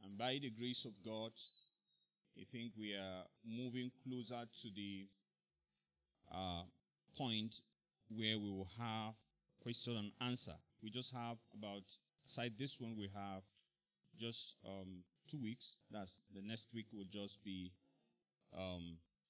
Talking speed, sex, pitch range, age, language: 135 wpm, male, 95-120 Hz, 30-49, English